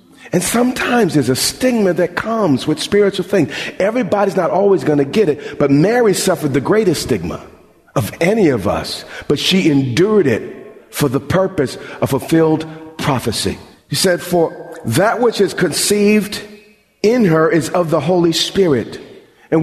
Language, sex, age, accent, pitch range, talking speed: English, male, 40-59, American, 155-220 Hz, 160 wpm